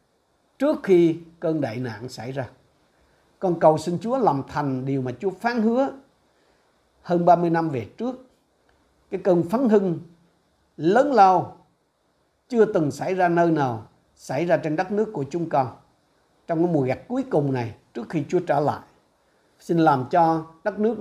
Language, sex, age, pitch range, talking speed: Vietnamese, male, 60-79, 130-175 Hz, 170 wpm